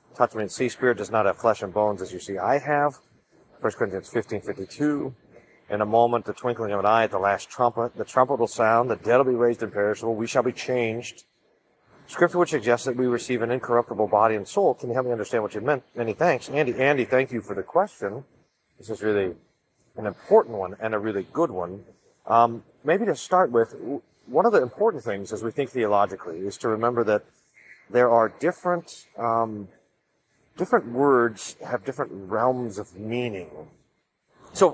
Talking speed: 200 wpm